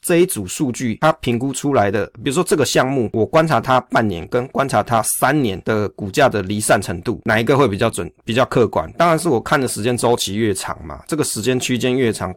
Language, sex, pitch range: Chinese, male, 105-130 Hz